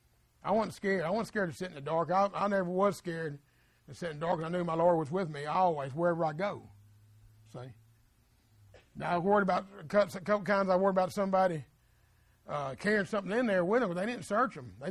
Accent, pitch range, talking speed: American, 155-205 Hz, 230 wpm